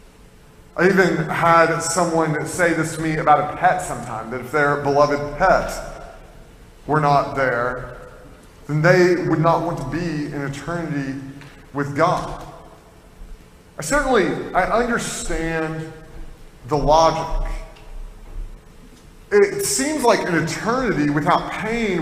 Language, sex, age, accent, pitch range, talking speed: English, male, 30-49, American, 155-200 Hz, 120 wpm